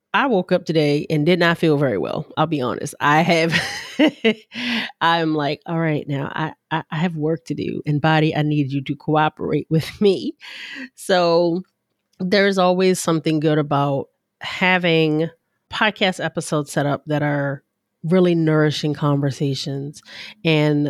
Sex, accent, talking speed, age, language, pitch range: female, American, 150 wpm, 30-49, English, 150-185 Hz